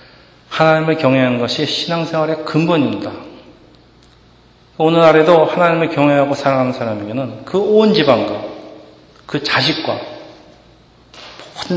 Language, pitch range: Korean, 120-150 Hz